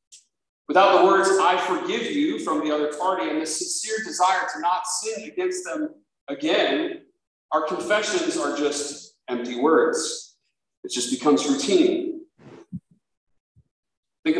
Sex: male